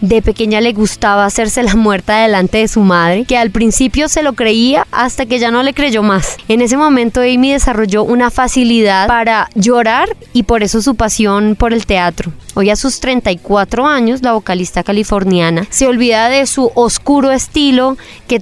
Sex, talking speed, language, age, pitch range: female, 180 wpm, Spanish, 20-39, 210-255 Hz